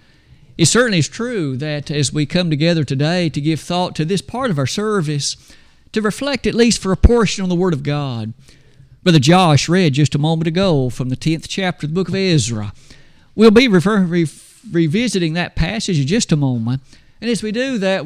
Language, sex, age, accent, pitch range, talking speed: English, male, 50-69, American, 140-185 Hz, 205 wpm